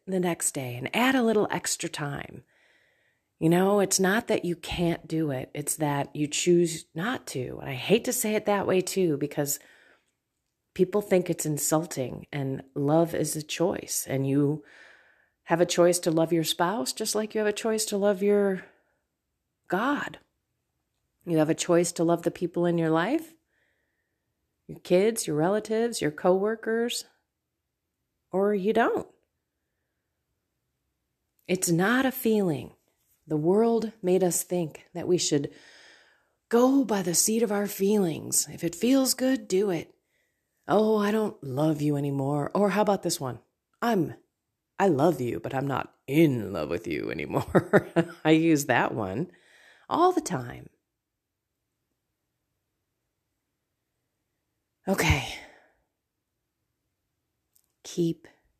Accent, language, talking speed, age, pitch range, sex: American, English, 140 wpm, 30-49, 150-205 Hz, female